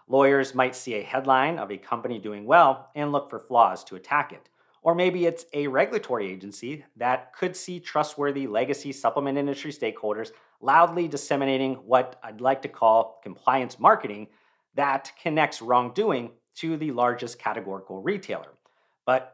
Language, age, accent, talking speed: English, 40-59, American, 150 wpm